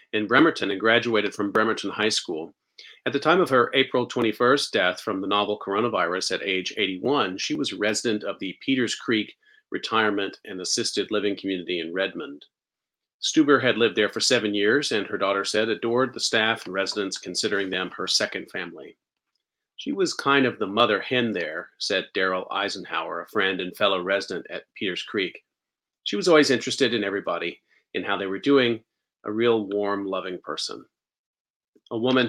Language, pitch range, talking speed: English, 100-120 Hz, 175 wpm